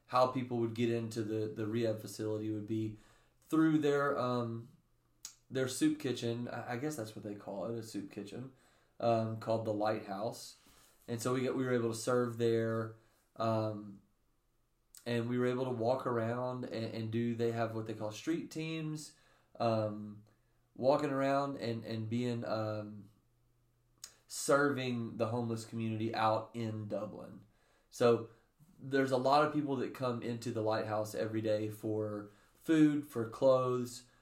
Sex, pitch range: male, 110-125 Hz